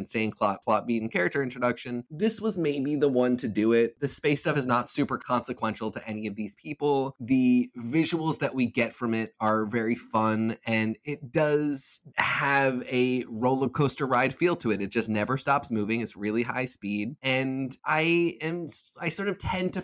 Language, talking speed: English, 195 wpm